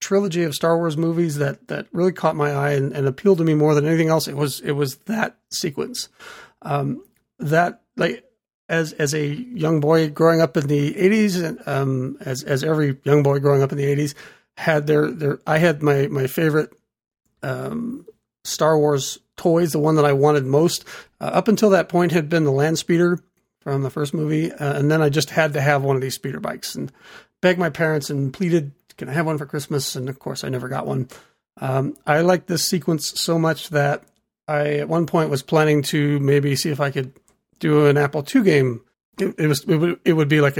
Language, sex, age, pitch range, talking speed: English, male, 40-59, 140-165 Hz, 220 wpm